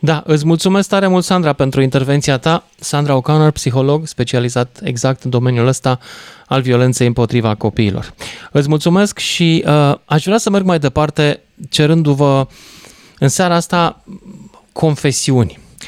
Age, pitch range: 20-39, 115-150 Hz